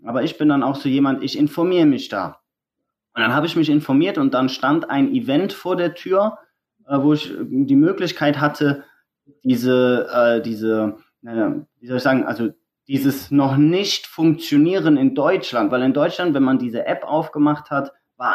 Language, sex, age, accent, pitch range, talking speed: German, male, 20-39, German, 140-175 Hz, 155 wpm